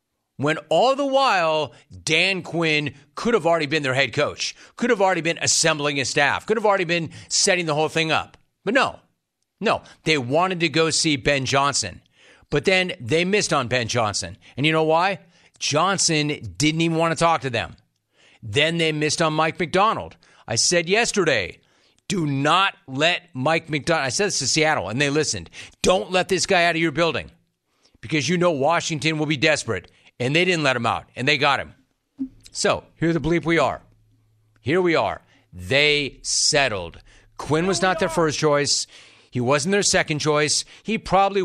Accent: American